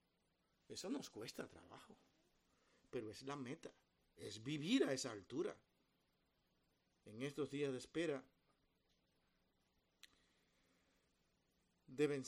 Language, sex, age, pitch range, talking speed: Spanish, male, 50-69, 145-220 Hz, 95 wpm